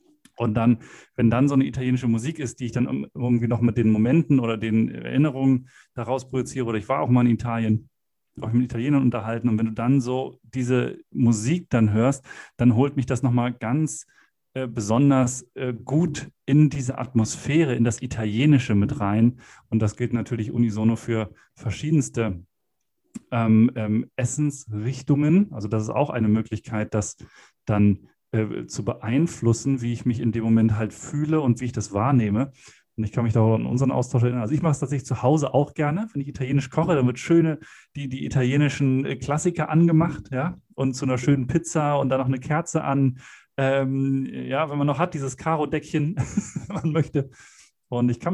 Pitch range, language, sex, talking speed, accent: 115-140 Hz, German, male, 185 wpm, German